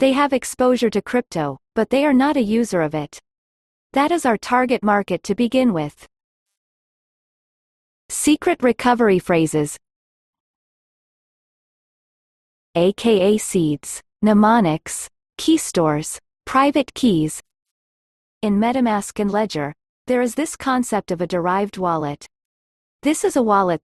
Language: English